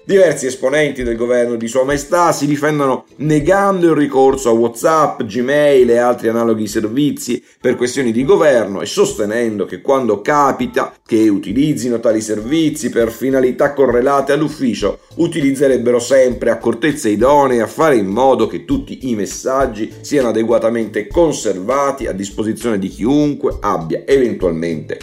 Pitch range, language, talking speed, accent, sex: 110-145 Hz, Italian, 135 wpm, native, male